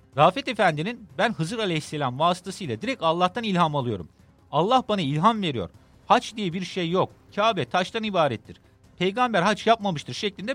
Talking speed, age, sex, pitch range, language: 150 wpm, 50-69, male, 130-215 Hz, Turkish